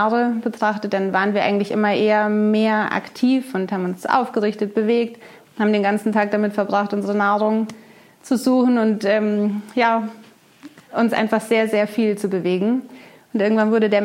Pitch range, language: 200-230 Hz, German